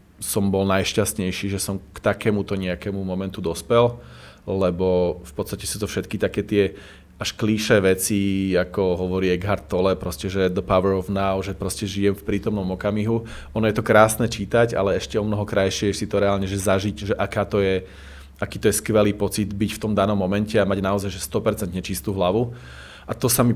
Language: Slovak